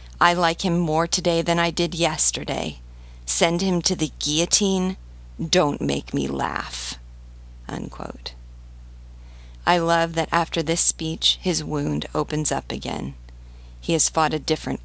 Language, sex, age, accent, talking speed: English, female, 40-59, American, 135 wpm